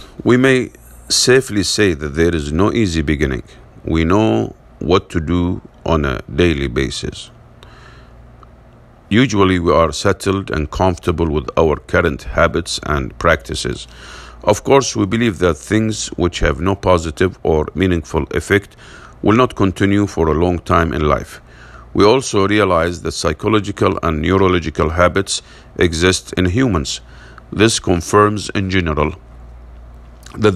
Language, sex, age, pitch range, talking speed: English, male, 50-69, 80-105 Hz, 135 wpm